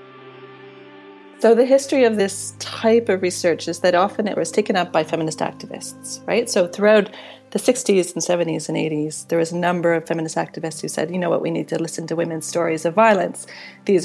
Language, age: English, 30-49